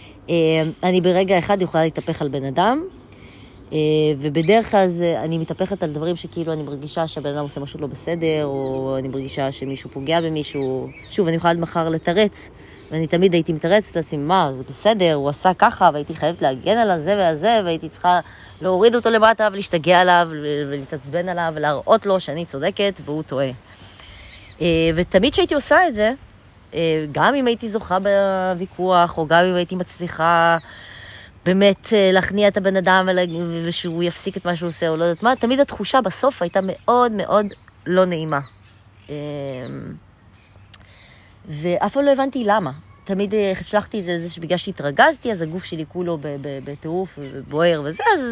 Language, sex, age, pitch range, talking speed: Hebrew, female, 20-39, 145-195 Hz, 155 wpm